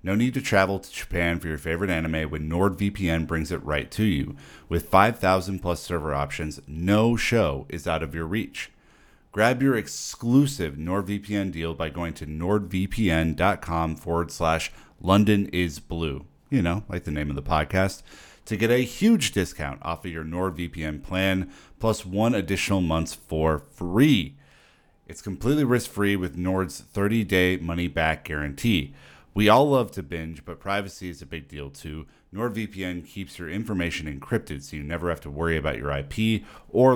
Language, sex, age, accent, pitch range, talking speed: English, male, 40-59, American, 80-100 Hz, 170 wpm